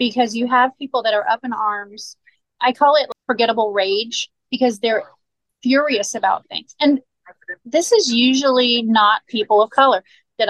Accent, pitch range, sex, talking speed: American, 210-275 Hz, female, 160 wpm